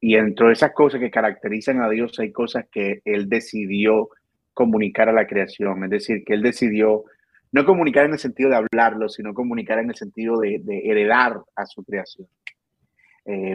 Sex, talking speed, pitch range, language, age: male, 180 wpm, 105-125 Hz, Spanish, 30-49